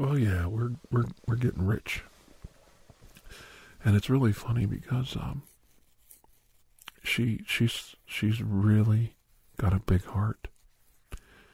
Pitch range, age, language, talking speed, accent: 90-120 Hz, 50-69, English, 110 wpm, American